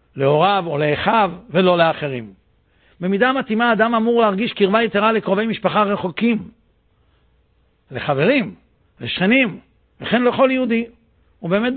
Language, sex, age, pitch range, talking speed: Hebrew, male, 60-79, 175-220 Hz, 105 wpm